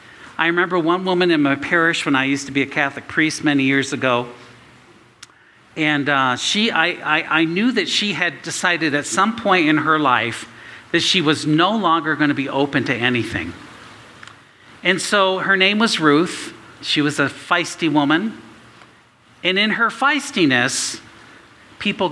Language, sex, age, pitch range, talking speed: English, male, 50-69, 135-185 Hz, 170 wpm